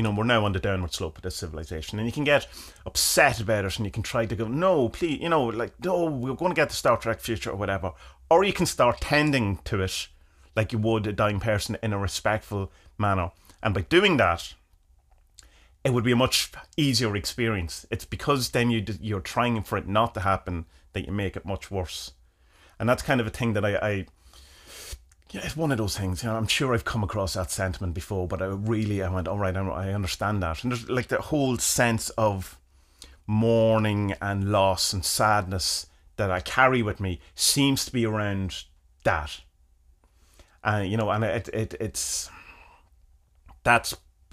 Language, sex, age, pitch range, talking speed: English, male, 30-49, 90-115 Hz, 205 wpm